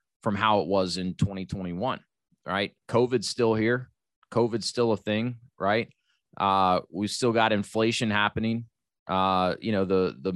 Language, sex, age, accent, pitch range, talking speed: English, male, 20-39, American, 95-115 Hz, 150 wpm